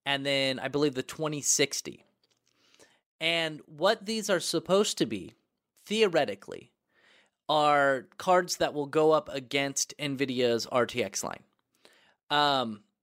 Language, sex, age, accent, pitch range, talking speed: English, male, 30-49, American, 130-170 Hz, 115 wpm